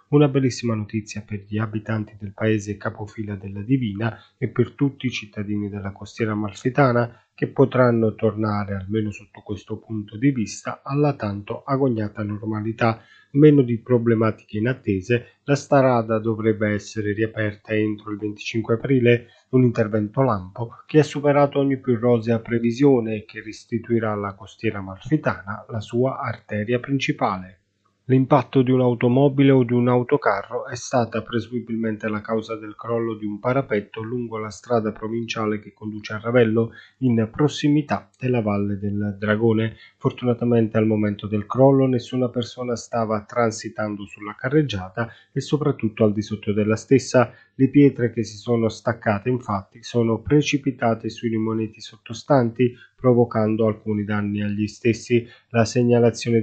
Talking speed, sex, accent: 140 wpm, male, native